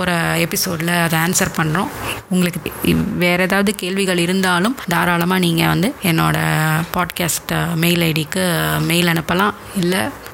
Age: 20-39